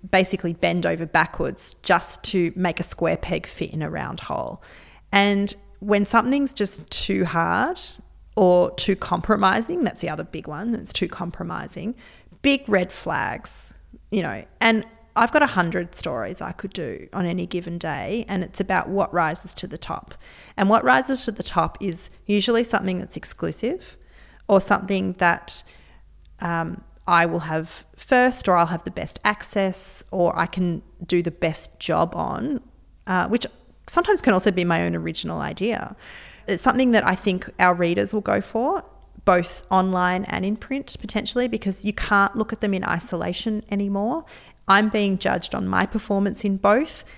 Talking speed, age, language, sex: 170 wpm, 30-49, English, female